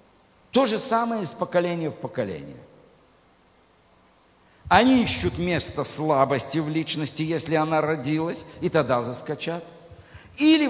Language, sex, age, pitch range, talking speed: Russian, male, 60-79, 140-185 Hz, 110 wpm